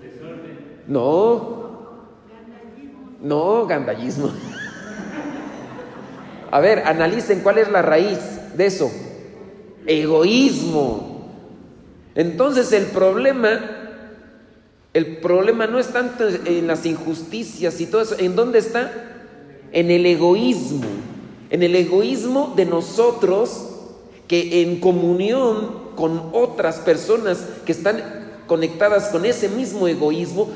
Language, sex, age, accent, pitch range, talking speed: Spanish, male, 40-59, Mexican, 165-225 Hz, 100 wpm